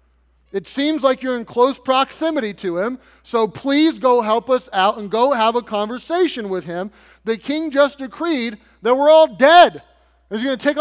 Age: 30-49